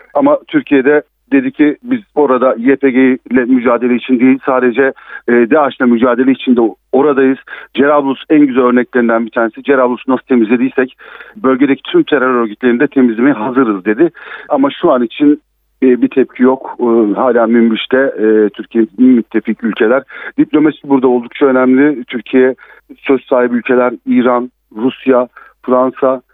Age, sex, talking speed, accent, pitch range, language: 50-69, male, 130 wpm, native, 125-140 Hz, Turkish